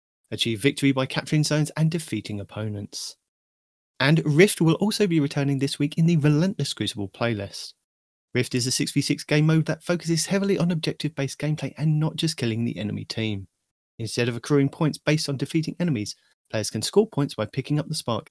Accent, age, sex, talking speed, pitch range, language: British, 30-49, male, 190 wpm, 110-150 Hz, English